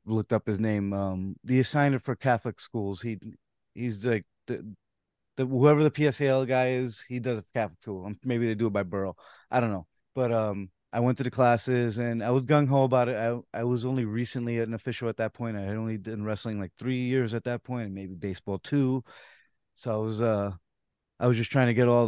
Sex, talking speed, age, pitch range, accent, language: male, 220 wpm, 30-49, 110-125 Hz, American, English